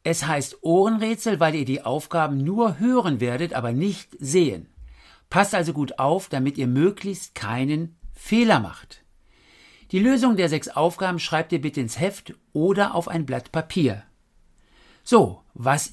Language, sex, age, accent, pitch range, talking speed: German, male, 60-79, German, 125-190 Hz, 150 wpm